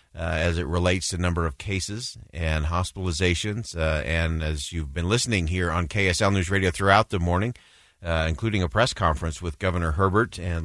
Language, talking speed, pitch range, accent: English, 185 wpm, 90-110 Hz, American